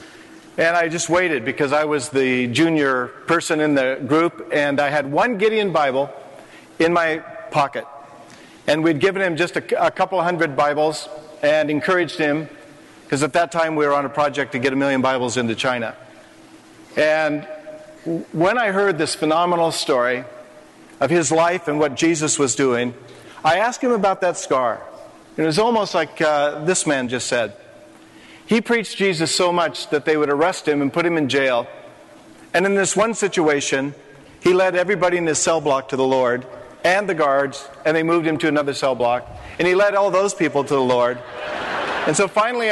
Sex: male